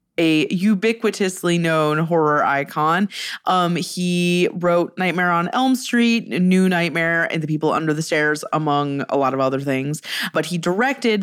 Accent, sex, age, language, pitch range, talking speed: American, female, 20-39, English, 165-230 Hz, 155 wpm